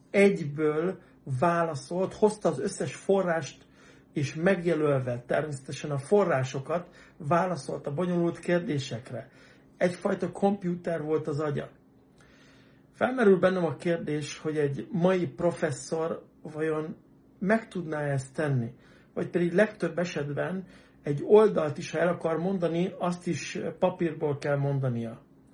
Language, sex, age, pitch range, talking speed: Hungarian, male, 60-79, 145-185 Hz, 115 wpm